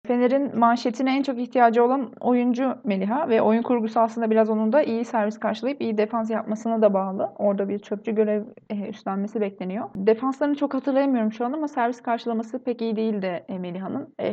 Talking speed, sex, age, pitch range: 175 wpm, female, 30-49, 205-245 Hz